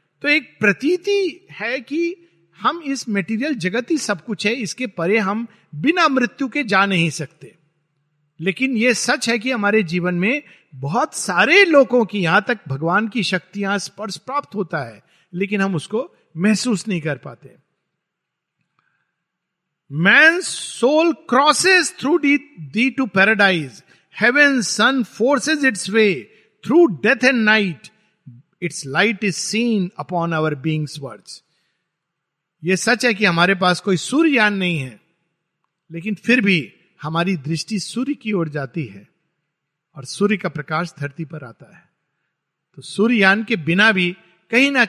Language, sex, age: Hindi, male, 50-69